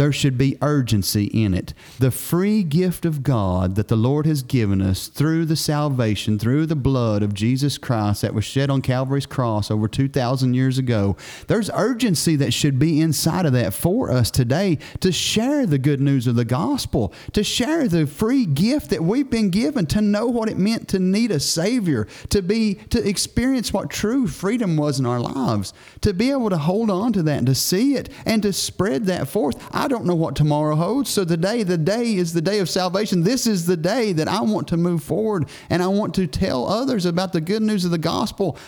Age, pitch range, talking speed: 40-59, 140-210 Hz, 215 wpm